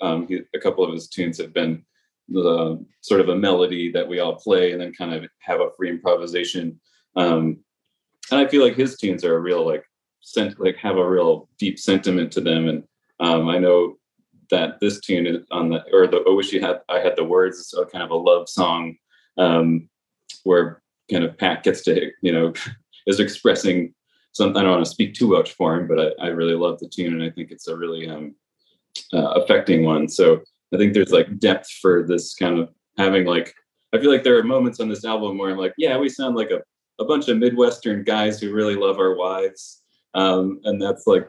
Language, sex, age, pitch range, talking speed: English, male, 30-49, 85-130 Hz, 220 wpm